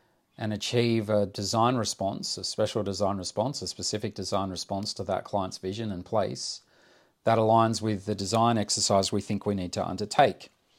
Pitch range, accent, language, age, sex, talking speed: 100-120 Hz, Australian, English, 30-49, male, 170 wpm